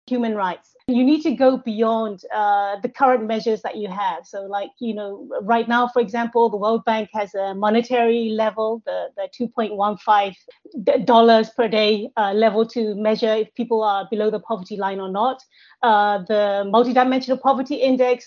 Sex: female